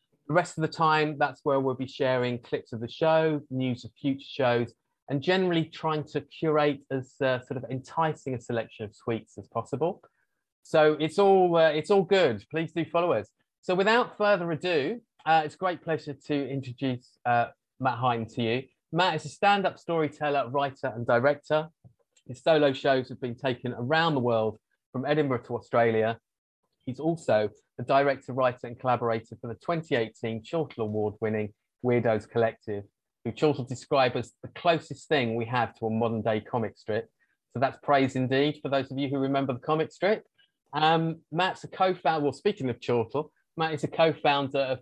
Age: 30-49